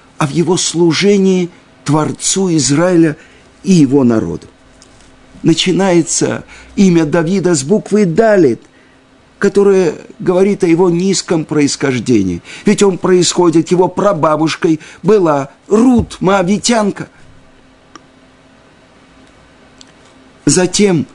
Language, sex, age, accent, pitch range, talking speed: Russian, male, 50-69, native, 130-190 Hz, 85 wpm